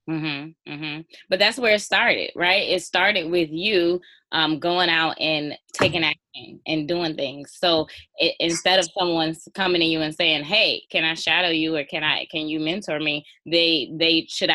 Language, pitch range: English, 150-170 Hz